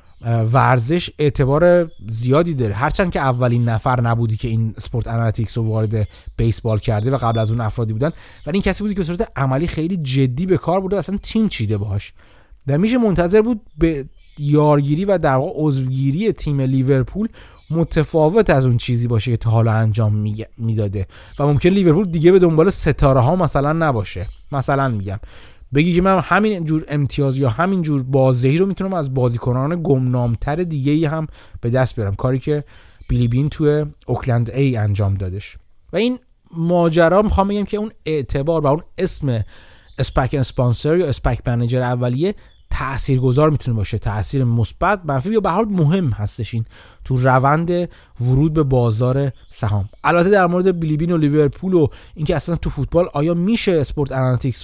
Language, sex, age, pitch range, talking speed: Persian, male, 30-49, 120-165 Hz, 170 wpm